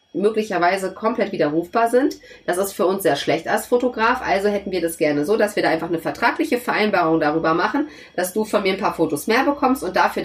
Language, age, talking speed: German, 30-49, 225 wpm